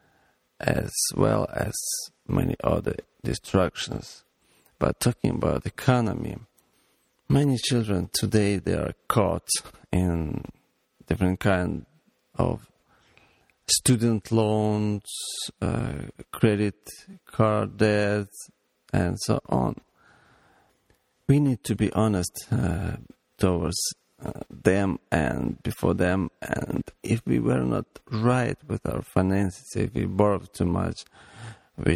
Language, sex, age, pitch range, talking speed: English, male, 40-59, 90-115 Hz, 105 wpm